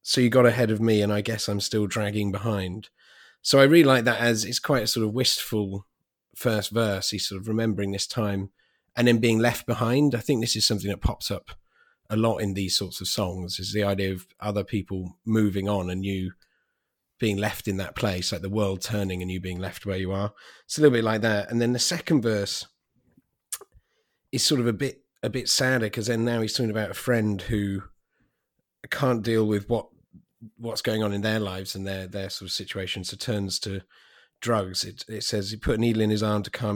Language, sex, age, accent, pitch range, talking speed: English, male, 30-49, British, 100-120 Hz, 225 wpm